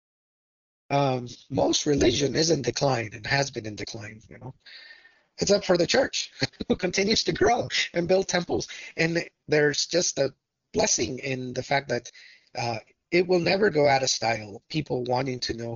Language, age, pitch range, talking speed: English, 30-49, 120-155 Hz, 175 wpm